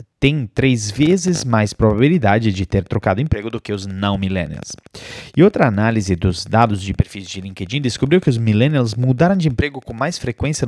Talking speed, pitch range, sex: 180 wpm, 100-140 Hz, male